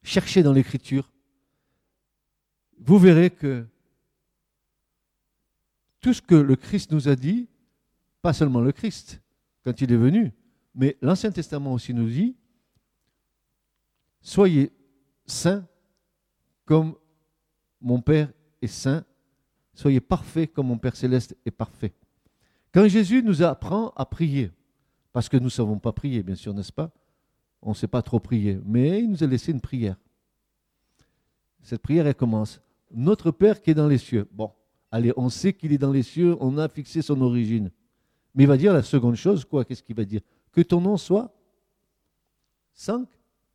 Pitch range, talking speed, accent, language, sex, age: 125-195 Hz, 160 wpm, French, French, male, 50-69